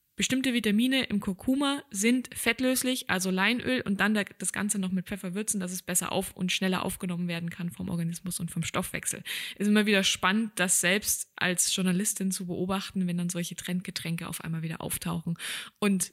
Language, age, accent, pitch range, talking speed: German, 20-39, German, 180-220 Hz, 180 wpm